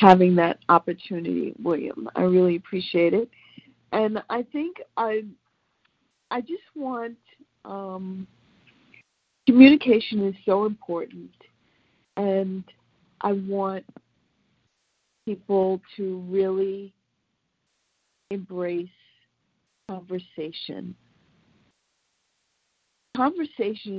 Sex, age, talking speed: female, 50-69, 75 wpm